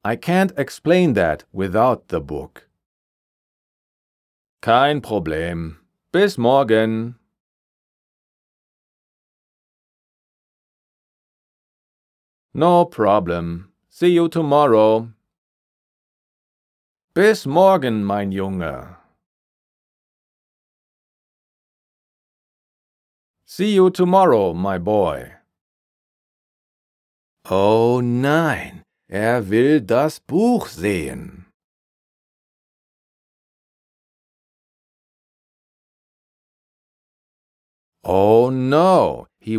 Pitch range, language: 95-150 Hz, German